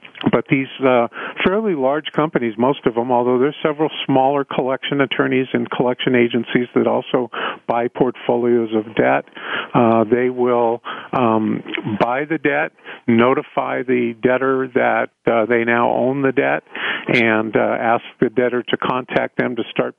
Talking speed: 155 wpm